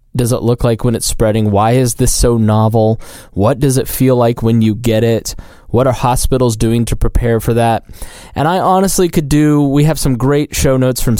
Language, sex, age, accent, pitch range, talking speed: English, male, 20-39, American, 110-135 Hz, 220 wpm